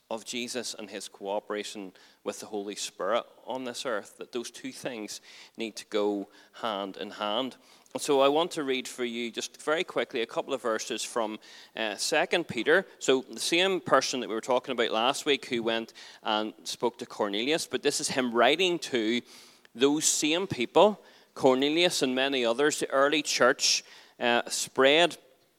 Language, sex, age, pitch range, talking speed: English, male, 30-49, 110-135 Hz, 175 wpm